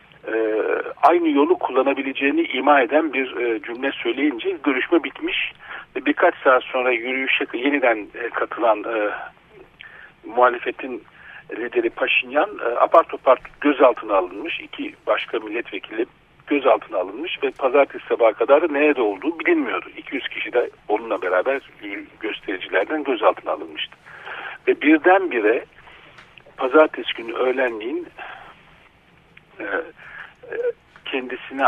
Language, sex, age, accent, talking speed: Turkish, male, 50-69, native, 95 wpm